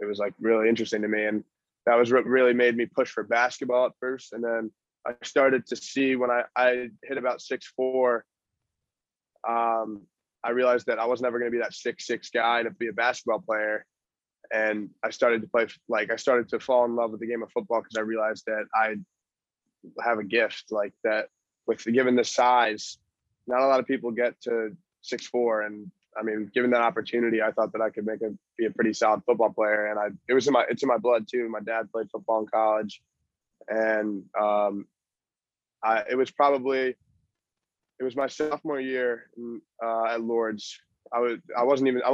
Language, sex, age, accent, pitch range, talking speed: English, male, 20-39, American, 110-125 Hz, 210 wpm